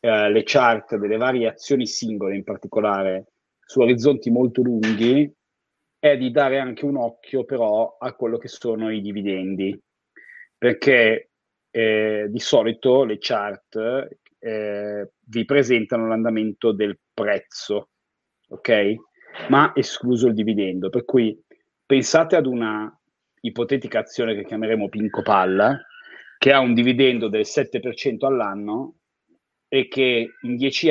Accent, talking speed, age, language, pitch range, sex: native, 125 wpm, 30-49, Italian, 110-130 Hz, male